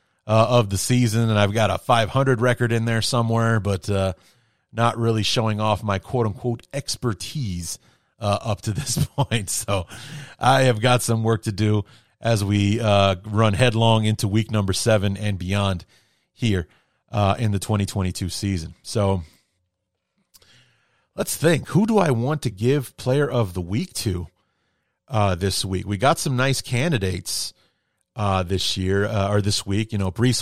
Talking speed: 170 wpm